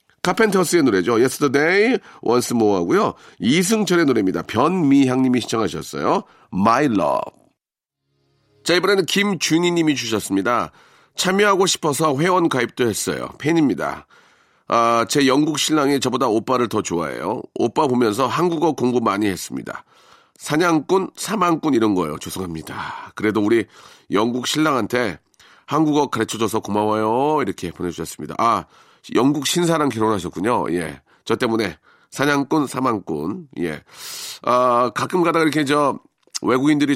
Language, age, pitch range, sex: Korean, 40-59, 110-155 Hz, male